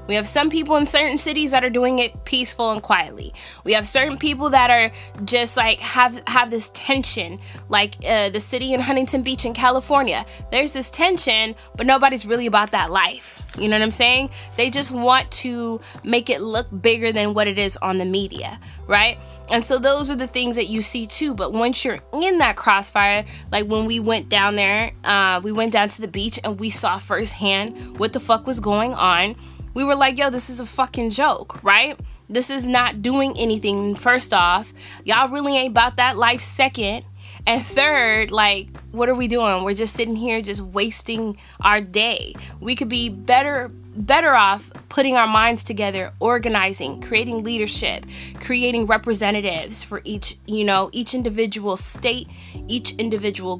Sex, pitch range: female, 205-250 Hz